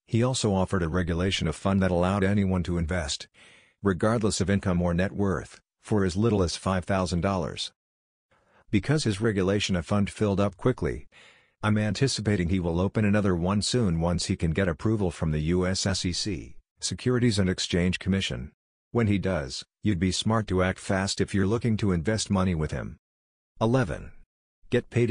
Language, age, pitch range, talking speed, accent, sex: English, 50-69, 90-105 Hz, 170 wpm, American, male